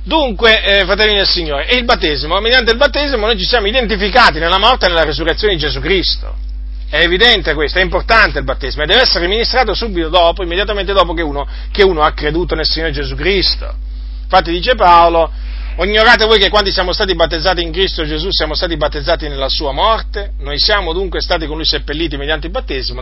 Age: 40-59